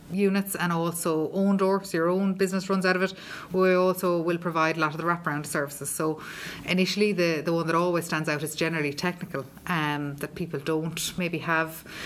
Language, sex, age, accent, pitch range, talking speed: English, female, 30-49, Irish, 155-180 Hz, 200 wpm